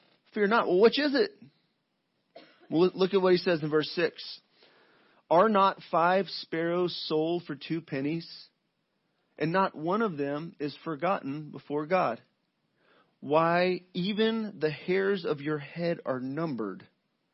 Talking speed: 140 wpm